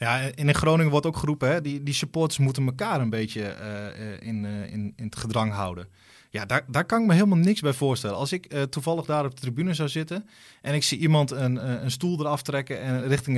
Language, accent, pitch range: Dutch, Dutch, 125-160 Hz